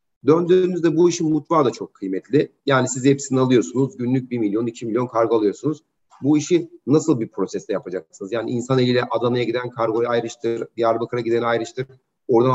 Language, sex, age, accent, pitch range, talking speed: Turkish, male, 40-59, native, 115-140 Hz, 165 wpm